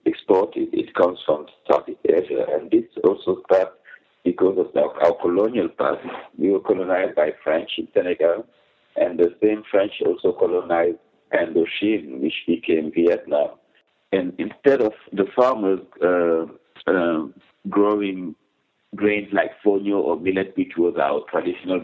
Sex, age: male, 60-79